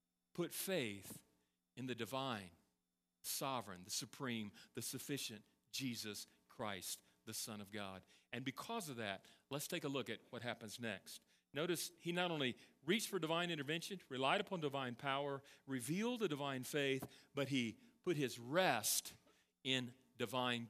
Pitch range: 115-170 Hz